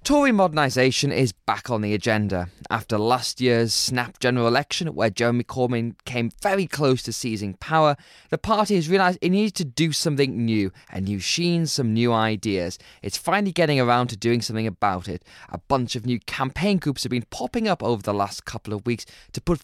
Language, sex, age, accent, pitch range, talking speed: English, male, 20-39, British, 110-155 Hz, 200 wpm